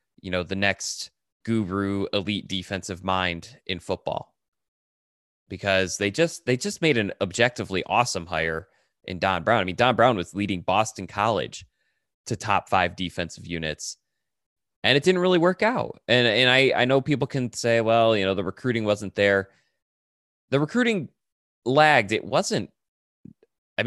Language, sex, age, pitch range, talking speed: English, male, 20-39, 95-120 Hz, 160 wpm